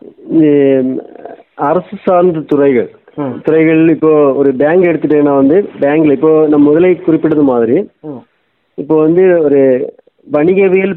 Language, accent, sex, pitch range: Tamil, native, male, 140-175 Hz